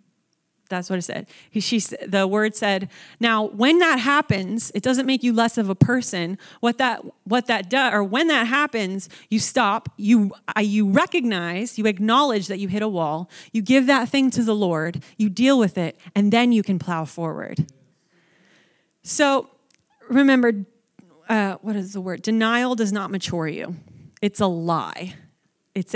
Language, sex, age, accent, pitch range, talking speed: English, female, 30-49, American, 190-240 Hz, 170 wpm